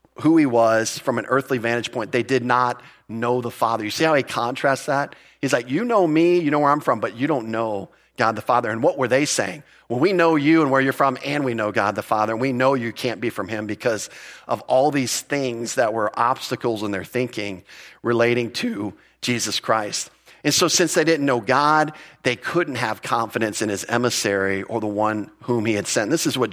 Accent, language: American, English